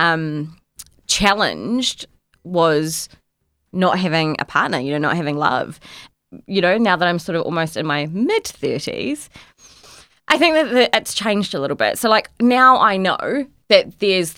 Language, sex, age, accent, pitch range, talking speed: English, female, 20-39, Australian, 155-200 Hz, 165 wpm